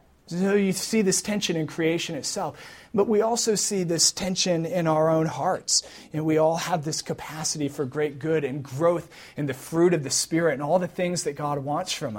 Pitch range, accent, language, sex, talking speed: 135-170 Hz, American, English, male, 210 wpm